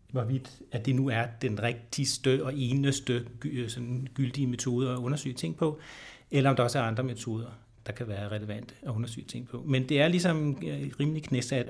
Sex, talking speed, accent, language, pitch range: male, 185 wpm, native, Danish, 120-140 Hz